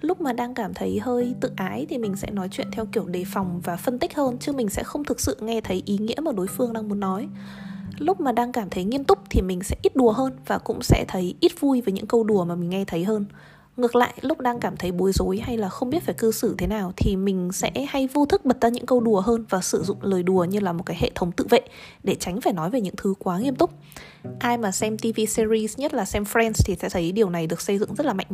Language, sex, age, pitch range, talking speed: Vietnamese, female, 20-39, 190-245 Hz, 290 wpm